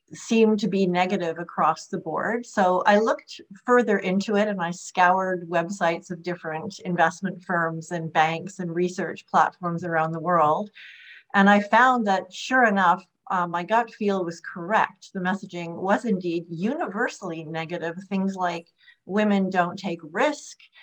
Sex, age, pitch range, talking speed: female, 40-59, 170-205 Hz, 155 wpm